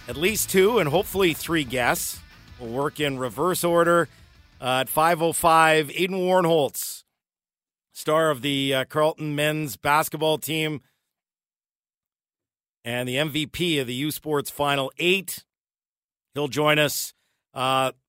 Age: 50-69